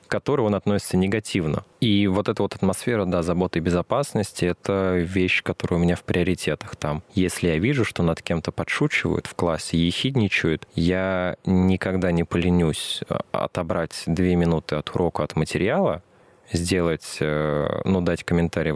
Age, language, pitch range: 20-39, Russian, 85-100 Hz